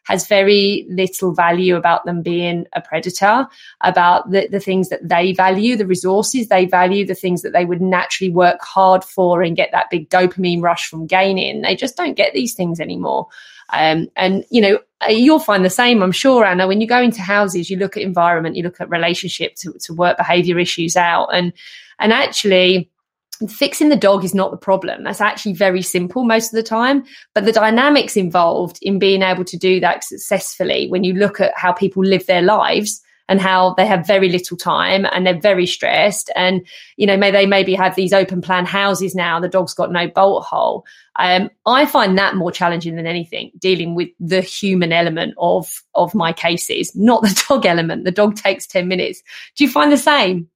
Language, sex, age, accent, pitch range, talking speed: English, female, 20-39, British, 175-205 Hz, 205 wpm